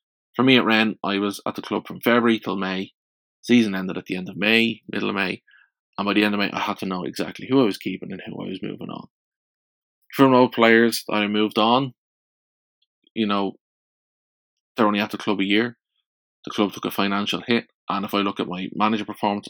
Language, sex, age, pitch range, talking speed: English, male, 20-39, 95-110 Hz, 225 wpm